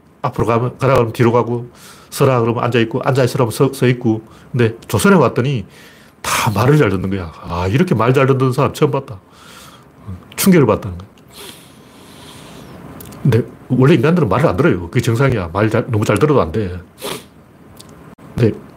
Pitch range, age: 105-150 Hz, 40-59